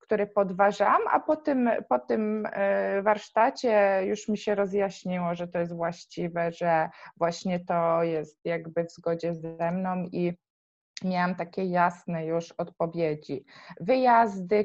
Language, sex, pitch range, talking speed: Polish, female, 170-195 Hz, 125 wpm